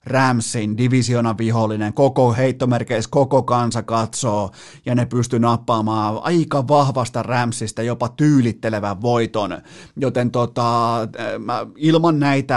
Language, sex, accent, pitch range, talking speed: Finnish, male, native, 115-140 Hz, 105 wpm